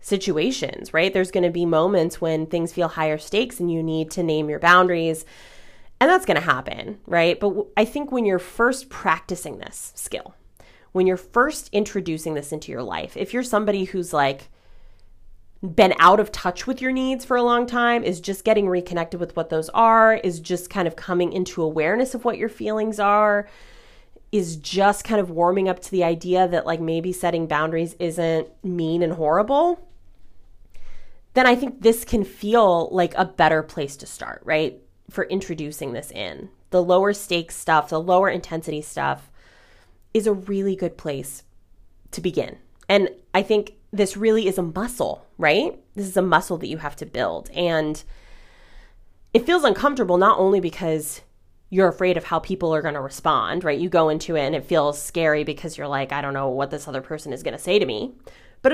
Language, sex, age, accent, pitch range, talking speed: English, female, 30-49, American, 155-205 Hz, 190 wpm